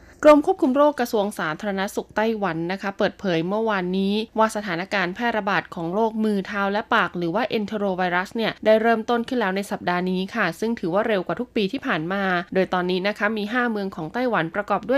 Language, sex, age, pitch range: Thai, female, 20-39, 185-230 Hz